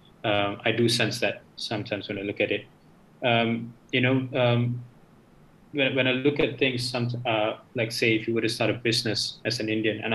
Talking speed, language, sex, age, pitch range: 215 wpm, English, male, 20-39, 105-120 Hz